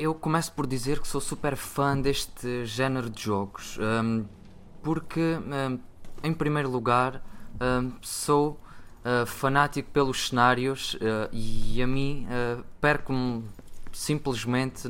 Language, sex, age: Portuguese, male, 20-39